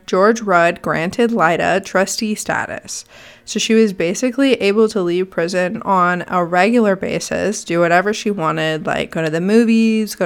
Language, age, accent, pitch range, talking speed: English, 20-39, American, 185-230 Hz, 165 wpm